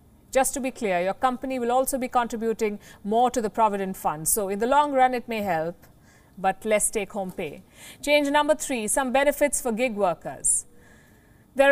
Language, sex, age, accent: English, female, 50-69, Indian